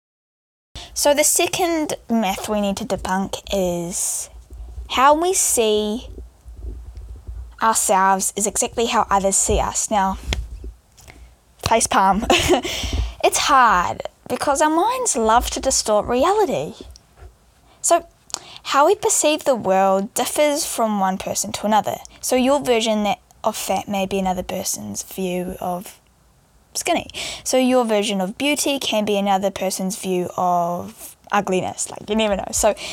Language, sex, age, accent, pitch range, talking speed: English, female, 10-29, Australian, 190-260 Hz, 130 wpm